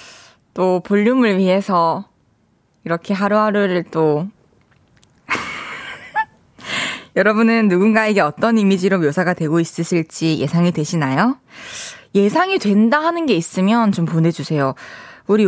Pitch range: 170-230 Hz